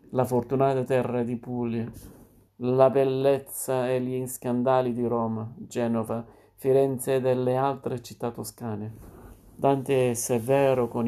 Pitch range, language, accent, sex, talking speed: 115-130 Hz, Italian, native, male, 125 wpm